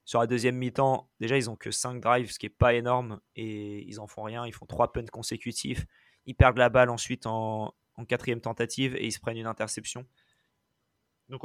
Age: 20-39